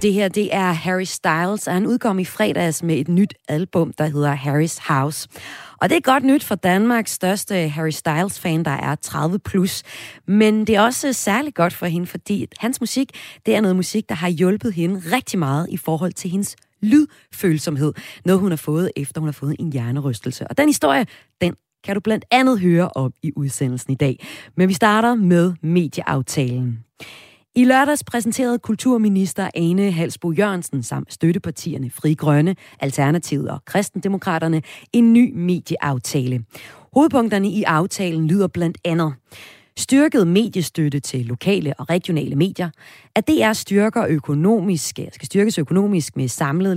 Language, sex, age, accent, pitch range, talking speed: Danish, female, 30-49, native, 150-205 Hz, 165 wpm